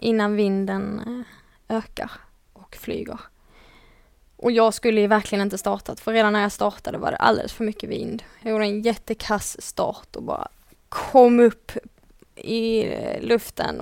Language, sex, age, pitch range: English, female, 20-39, 210-230 Hz